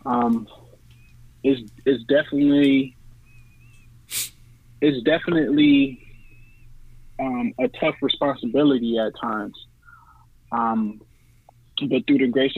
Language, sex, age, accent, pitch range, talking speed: English, male, 20-39, American, 120-135 Hz, 80 wpm